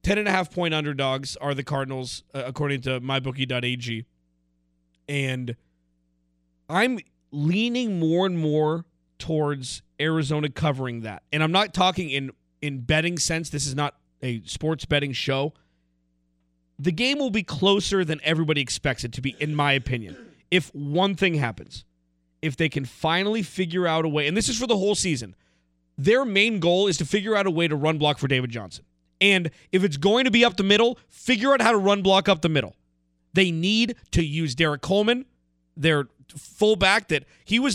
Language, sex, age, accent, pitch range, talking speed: English, male, 30-49, American, 130-195 Hz, 185 wpm